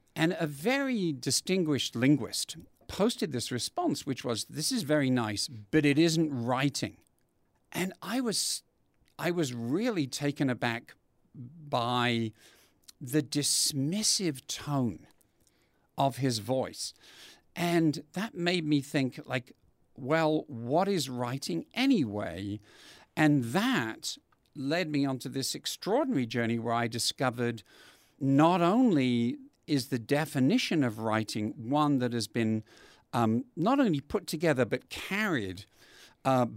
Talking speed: 120 wpm